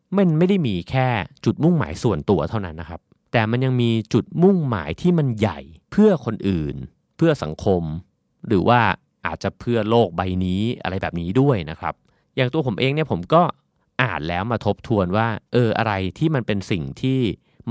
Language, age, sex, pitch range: Thai, 30-49, male, 90-125 Hz